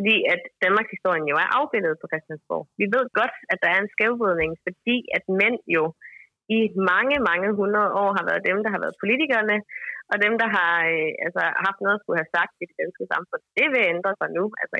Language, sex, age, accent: Danish, female, 30-49, native